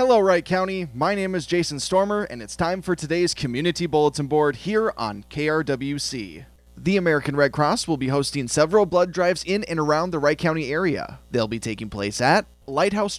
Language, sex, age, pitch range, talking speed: English, male, 20-39, 130-175 Hz, 190 wpm